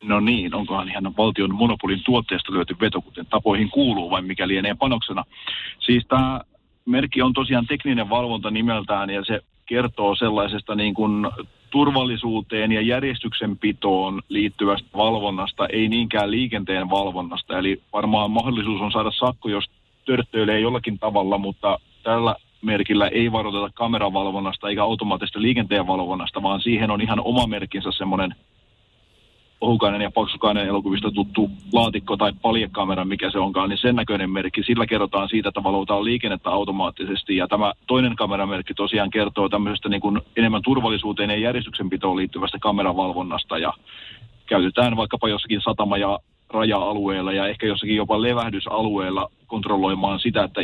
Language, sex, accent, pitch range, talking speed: Finnish, male, native, 100-115 Hz, 140 wpm